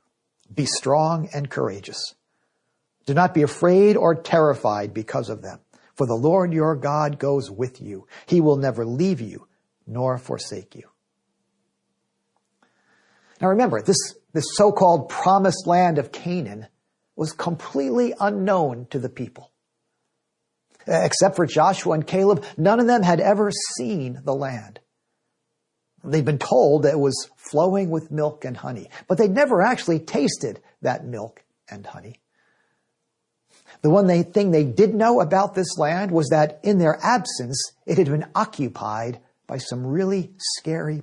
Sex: male